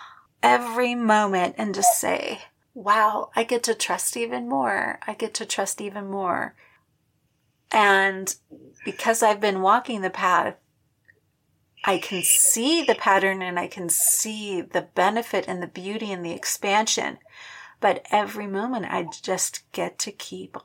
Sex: female